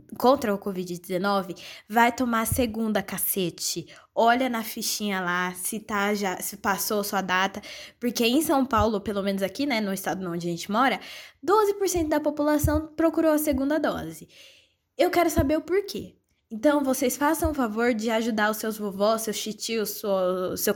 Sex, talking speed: female, 175 wpm